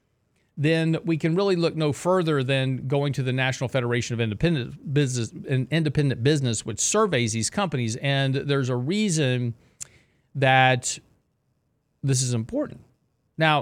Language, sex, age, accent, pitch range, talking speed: English, male, 40-59, American, 125-150 Hz, 140 wpm